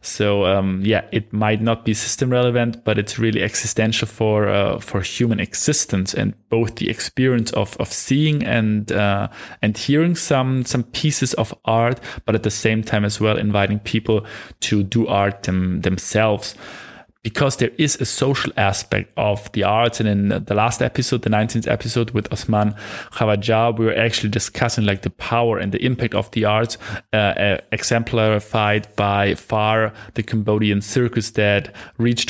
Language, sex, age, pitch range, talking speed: English, male, 20-39, 100-115 Hz, 170 wpm